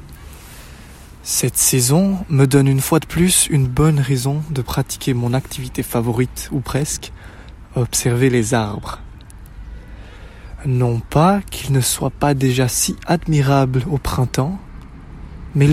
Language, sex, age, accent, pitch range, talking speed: French, male, 20-39, French, 110-145 Hz, 125 wpm